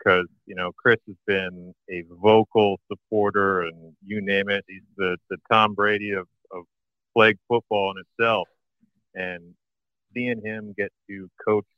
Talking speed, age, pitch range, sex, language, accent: 150 wpm, 40-59, 95-110 Hz, male, English, American